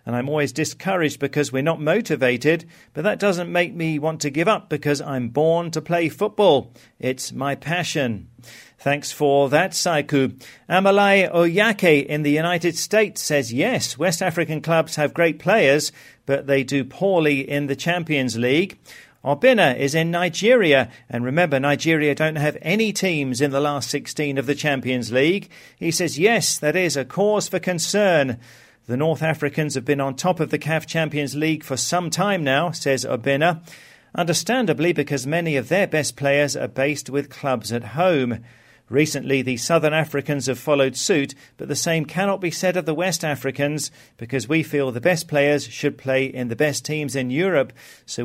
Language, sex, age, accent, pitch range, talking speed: English, male, 40-59, British, 135-170 Hz, 180 wpm